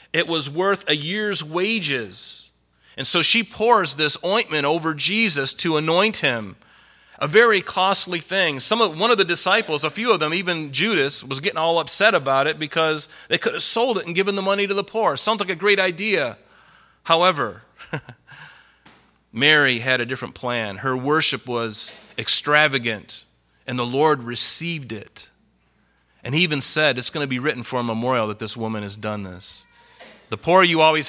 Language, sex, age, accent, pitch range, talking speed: English, male, 30-49, American, 125-170 Hz, 180 wpm